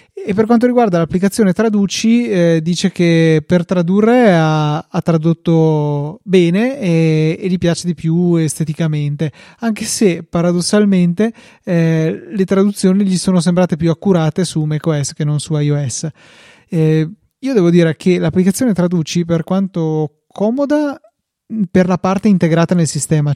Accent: native